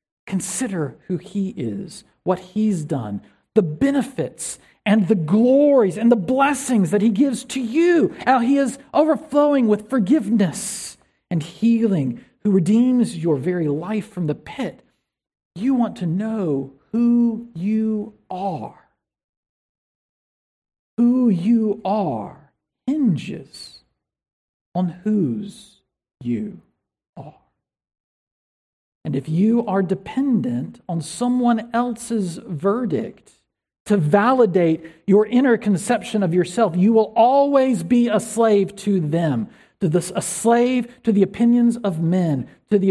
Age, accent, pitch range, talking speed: 50-69, American, 170-235 Hz, 120 wpm